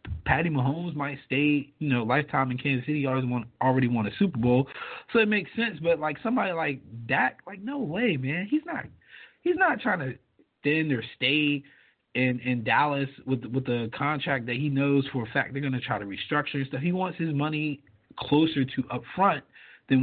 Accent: American